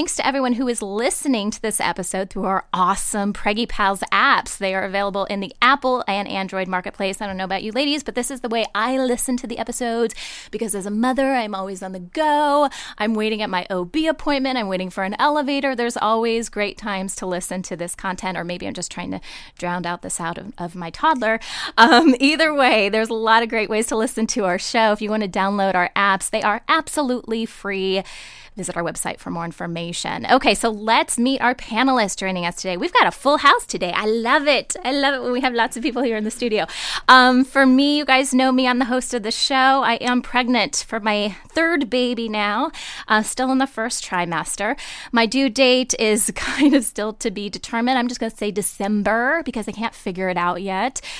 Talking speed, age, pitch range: 230 wpm, 10-29, 195-255 Hz